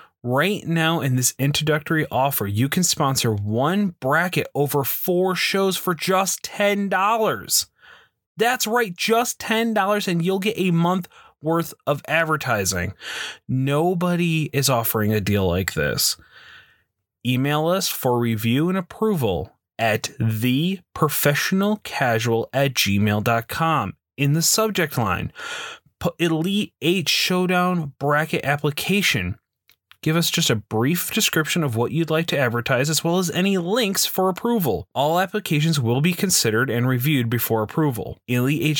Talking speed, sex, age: 130 wpm, male, 30-49